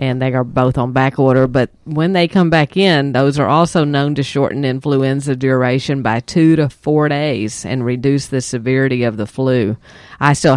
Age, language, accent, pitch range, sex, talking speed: 50-69, English, American, 130-155 Hz, female, 200 wpm